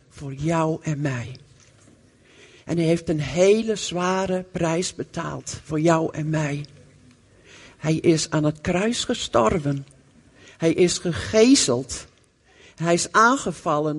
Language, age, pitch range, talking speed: Dutch, 60-79, 145-200 Hz, 120 wpm